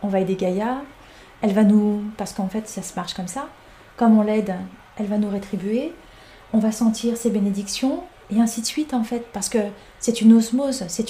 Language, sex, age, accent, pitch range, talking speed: French, female, 30-49, French, 200-235 Hz, 210 wpm